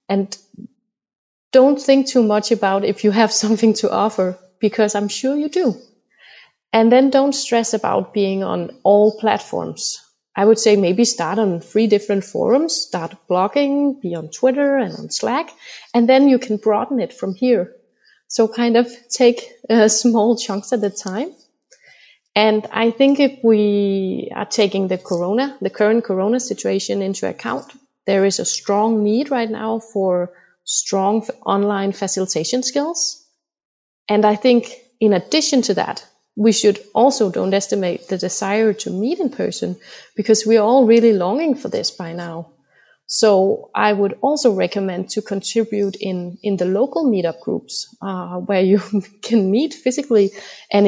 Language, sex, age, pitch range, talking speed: English, female, 30-49, 195-250 Hz, 160 wpm